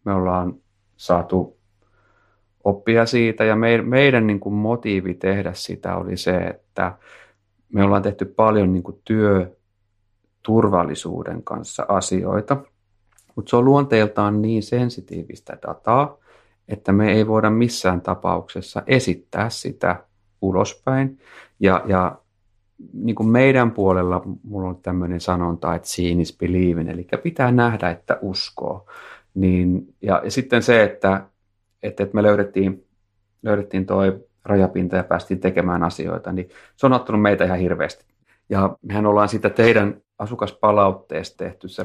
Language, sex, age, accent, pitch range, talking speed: Finnish, male, 30-49, native, 95-110 Hz, 120 wpm